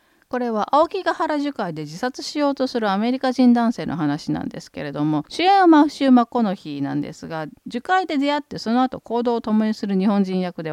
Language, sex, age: Japanese, female, 40-59